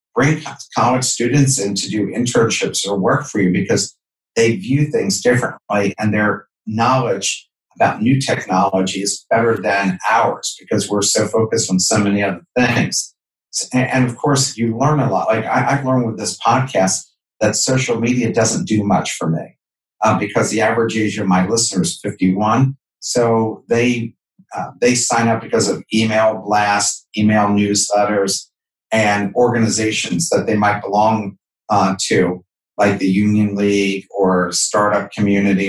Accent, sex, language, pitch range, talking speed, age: American, male, English, 100-125 Hz, 155 wpm, 50-69